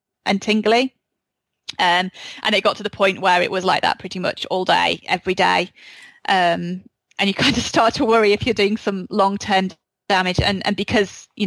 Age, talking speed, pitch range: 30-49, 200 wpm, 190-220 Hz